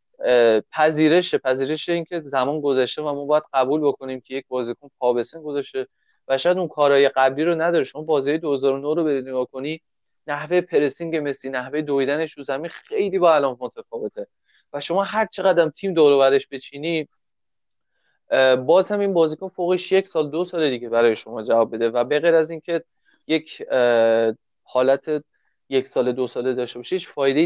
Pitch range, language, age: 130-170 Hz, Persian, 30-49